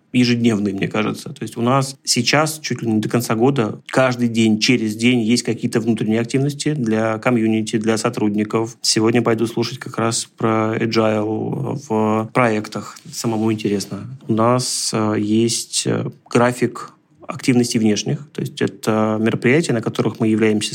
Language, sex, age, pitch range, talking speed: Russian, male, 20-39, 110-125 Hz, 150 wpm